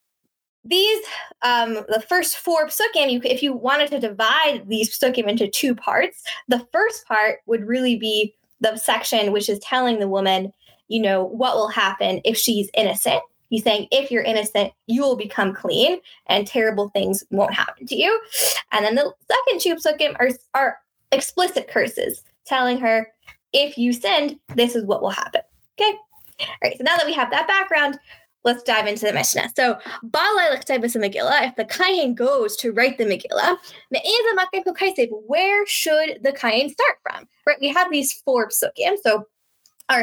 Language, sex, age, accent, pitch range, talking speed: English, female, 10-29, American, 220-315 Hz, 170 wpm